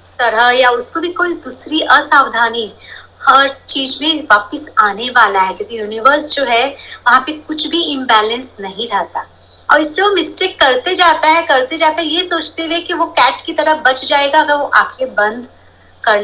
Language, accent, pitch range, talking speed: Hindi, native, 255-335 Hz, 105 wpm